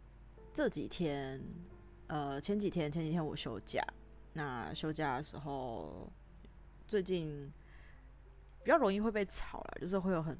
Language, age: Chinese, 20-39